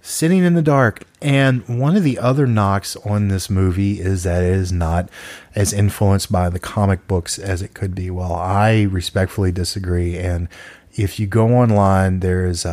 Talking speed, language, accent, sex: 185 wpm, English, American, male